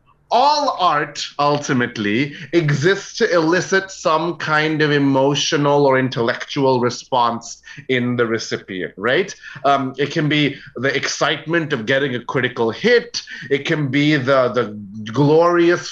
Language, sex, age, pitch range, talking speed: English, male, 30-49, 140-180 Hz, 130 wpm